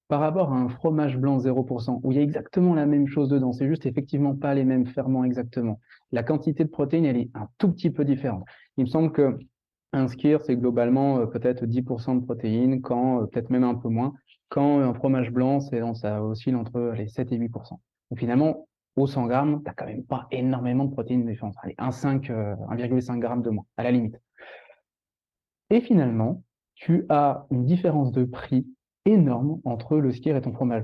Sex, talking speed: male, 200 wpm